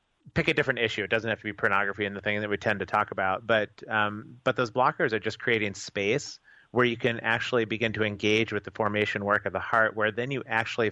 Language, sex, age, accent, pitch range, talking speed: English, male, 30-49, American, 105-120 Hz, 255 wpm